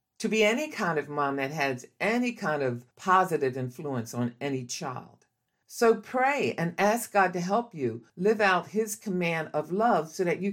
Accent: American